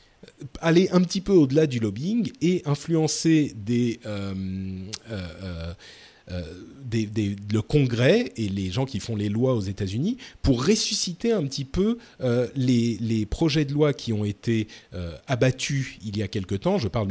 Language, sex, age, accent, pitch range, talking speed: French, male, 40-59, French, 105-155 Hz, 180 wpm